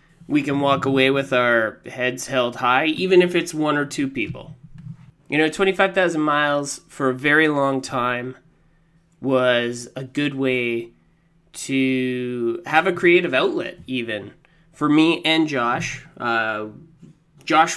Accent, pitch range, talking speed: American, 130-170 Hz, 140 wpm